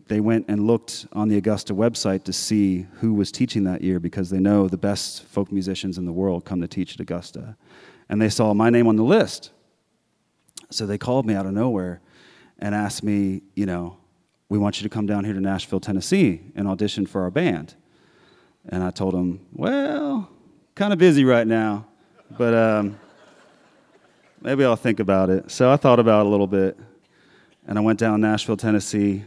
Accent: American